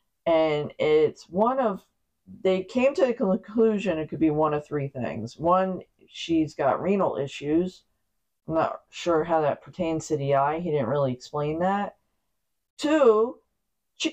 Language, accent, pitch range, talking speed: English, American, 140-190 Hz, 155 wpm